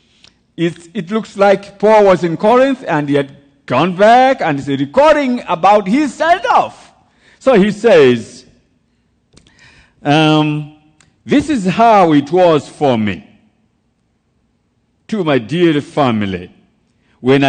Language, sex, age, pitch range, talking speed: English, male, 50-69, 155-245 Hz, 125 wpm